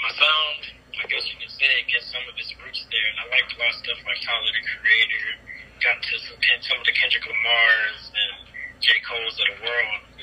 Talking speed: 235 wpm